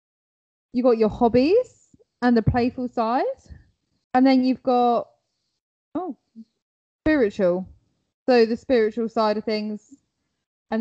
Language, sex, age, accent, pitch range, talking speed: English, female, 10-29, British, 220-285 Hz, 115 wpm